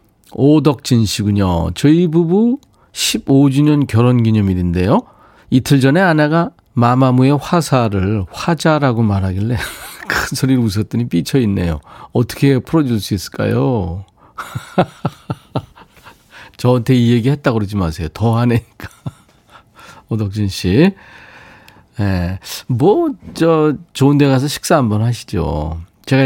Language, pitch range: Korean, 95-145 Hz